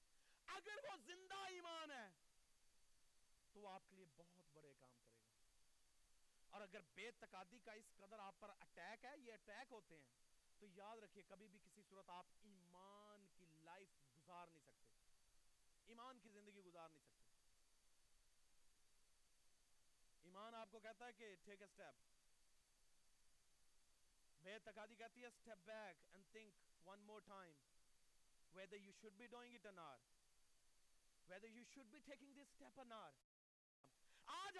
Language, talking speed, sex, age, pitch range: Urdu, 130 wpm, male, 40-59, 170-250 Hz